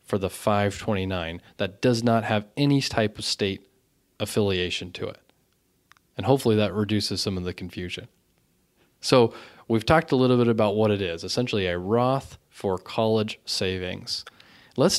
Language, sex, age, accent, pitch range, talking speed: English, male, 20-39, American, 105-125 Hz, 155 wpm